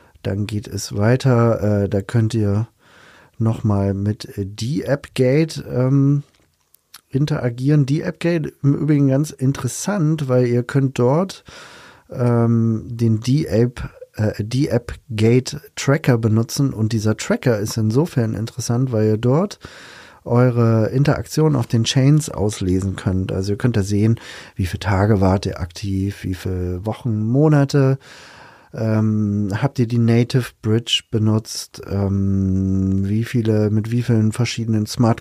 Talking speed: 130 wpm